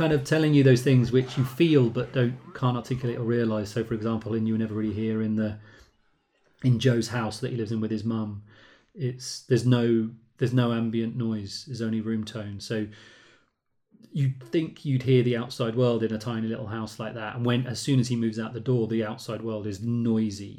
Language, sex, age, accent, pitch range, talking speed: English, male, 30-49, British, 110-125 Hz, 225 wpm